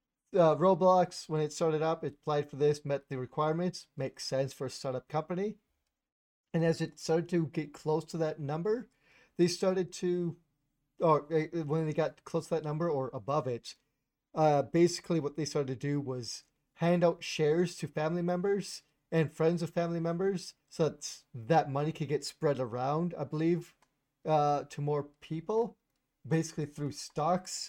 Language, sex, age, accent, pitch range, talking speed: English, male, 40-59, American, 140-165 Hz, 170 wpm